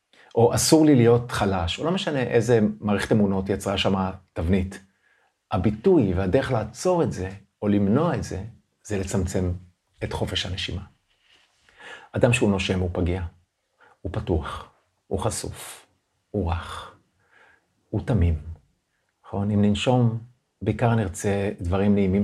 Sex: male